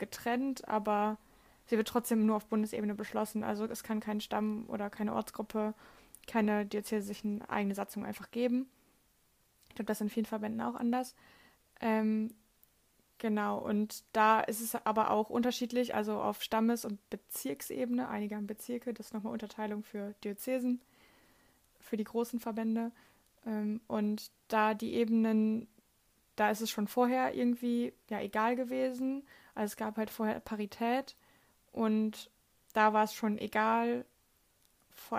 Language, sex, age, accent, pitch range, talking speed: German, female, 20-39, German, 210-235 Hz, 145 wpm